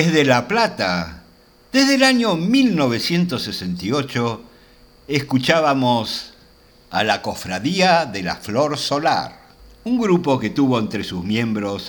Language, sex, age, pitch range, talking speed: Spanish, male, 60-79, 90-130 Hz, 110 wpm